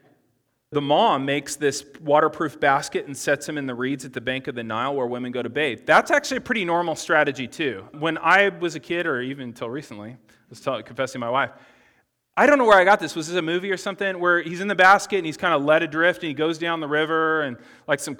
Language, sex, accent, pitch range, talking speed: English, male, American, 140-195 Hz, 255 wpm